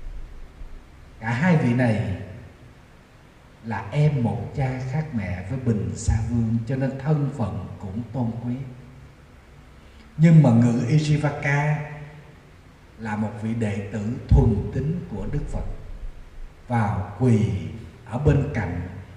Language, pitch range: Vietnamese, 105-140 Hz